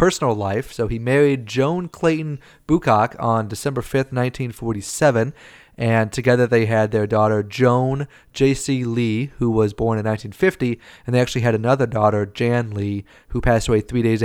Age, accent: 30-49, American